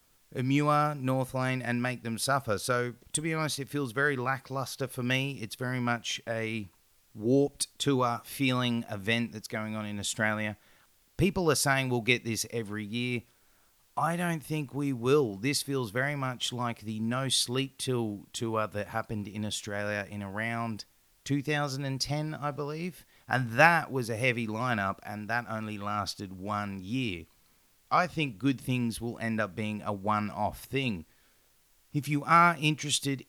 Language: English